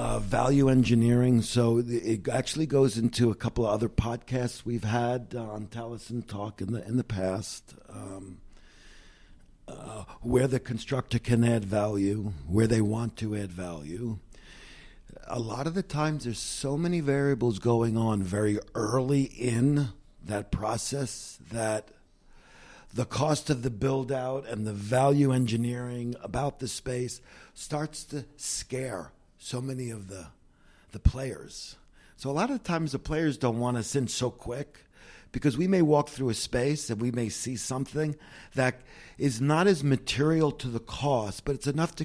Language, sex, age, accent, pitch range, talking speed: English, male, 60-79, American, 105-135 Hz, 160 wpm